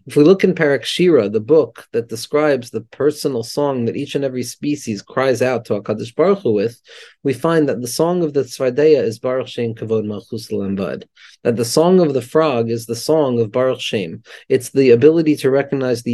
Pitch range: 125-155 Hz